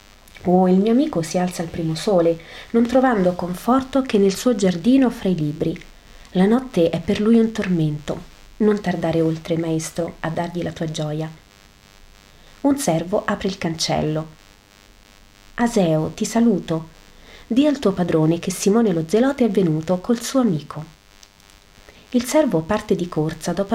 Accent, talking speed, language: native, 155 wpm, Italian